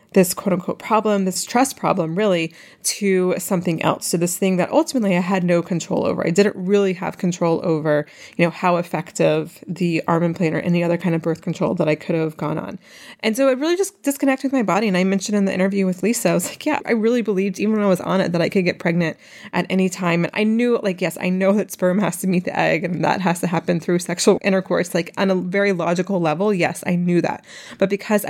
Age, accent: 20-39, American